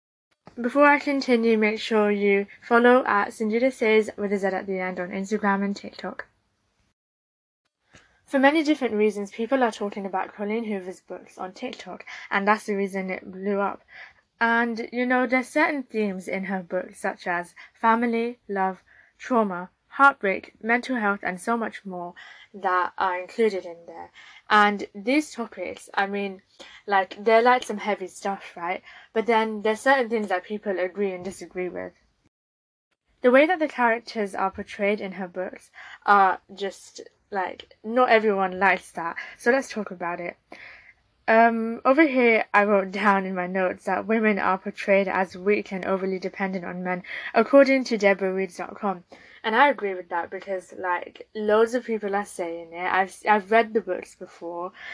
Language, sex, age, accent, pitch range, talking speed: English, female, 10-29, British, 190-230 Hz, 165 wpm